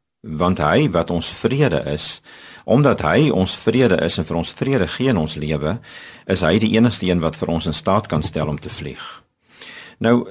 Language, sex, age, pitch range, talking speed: Dutch, male, 50-69, 80-105 Hz, 205 wpm